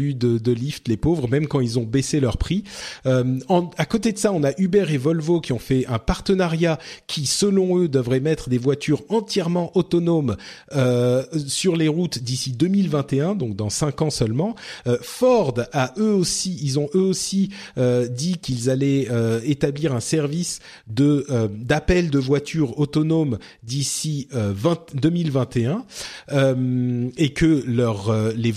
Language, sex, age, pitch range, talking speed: French, male, 40-59, 125-165 Hz, 170 wpm